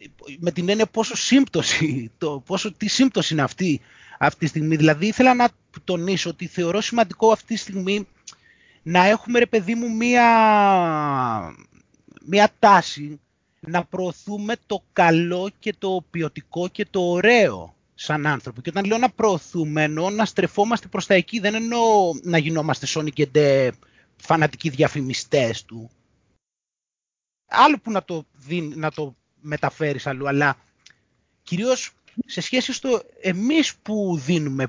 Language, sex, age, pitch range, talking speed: Greek, male, 30-49, 155-230 Hz, 135 wpm